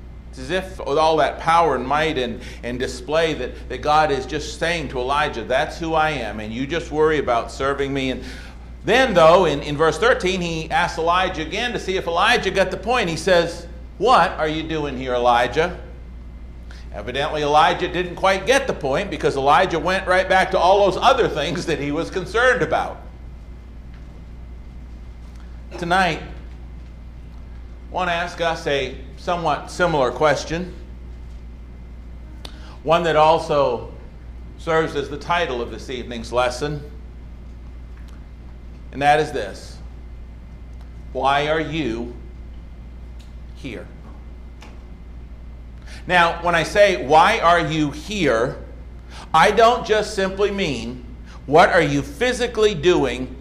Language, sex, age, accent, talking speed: English, male, 50-69, American, 140 wpm